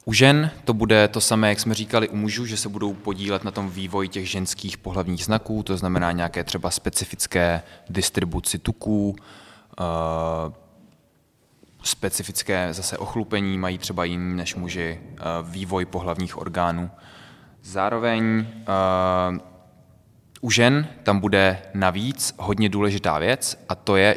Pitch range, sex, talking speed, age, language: 95-110 Hz, male, 135 wpm, 20-39, Czech